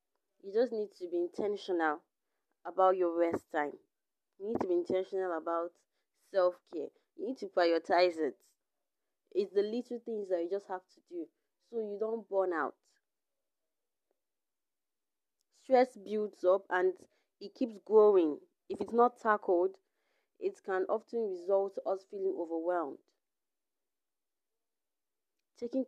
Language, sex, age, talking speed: English, female, 30-49, 130 wpm